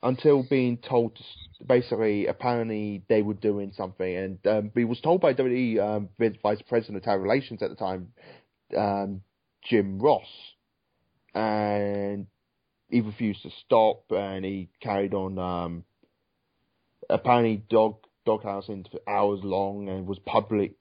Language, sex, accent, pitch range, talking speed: English, male, British, 100-120 Hz, 140 wpm